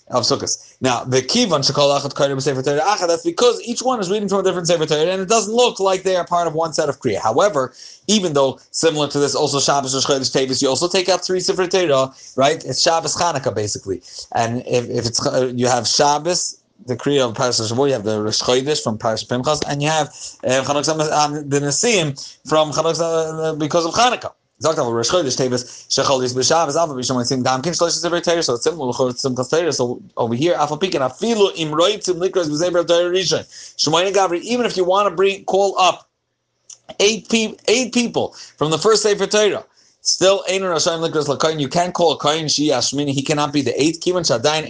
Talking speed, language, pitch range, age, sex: 150 wpm, English, 135-185 Hz, 30-49, male